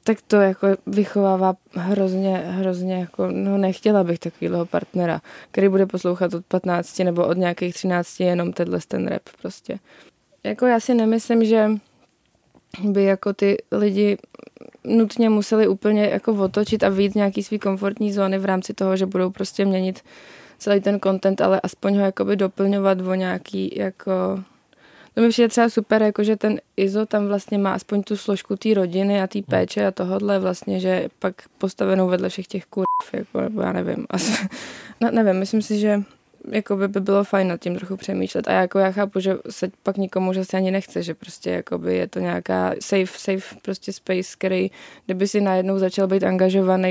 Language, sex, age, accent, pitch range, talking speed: Czech, female, 20-39, native, 185-205 Hz, 175 wpm